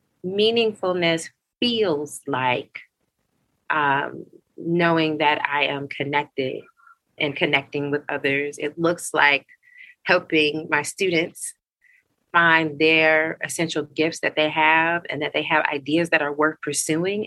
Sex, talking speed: female, 120 wpm